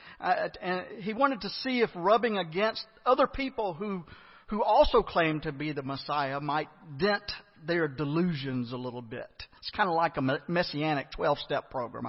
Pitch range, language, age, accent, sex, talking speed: 170-265 Hz, English, 50-69, American, male, 170 wpm